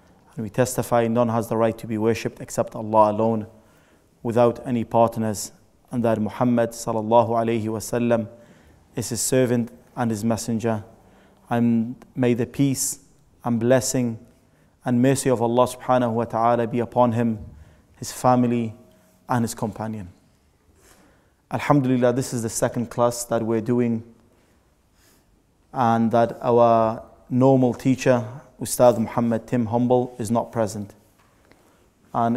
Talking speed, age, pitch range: 130 wpm, 20-39, 115-125 Hz